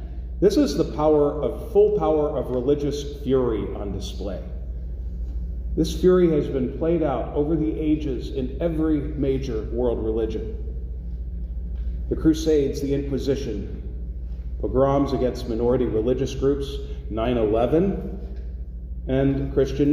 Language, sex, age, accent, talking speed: English, male, 40-59, American, 115 wpm